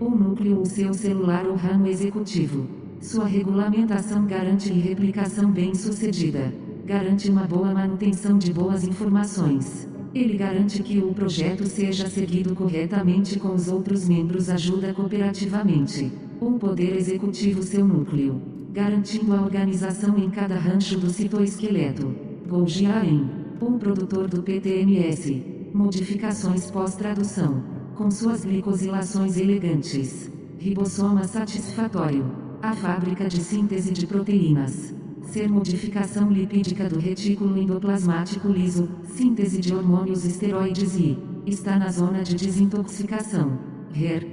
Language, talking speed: English, 115 wpm